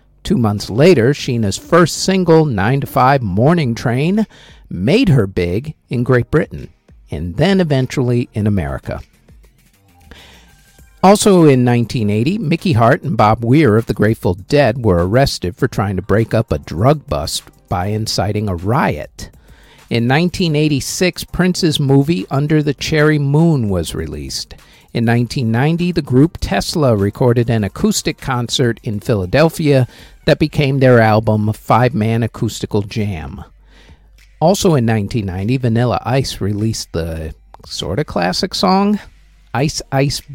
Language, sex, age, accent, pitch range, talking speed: English, male, 50-69, American, 105-150 Hz, 135 wpm